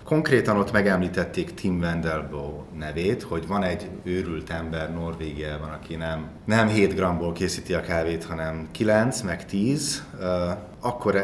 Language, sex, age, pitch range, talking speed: Hungarian, male, 30-49, 80-100 Hz, 135 wpm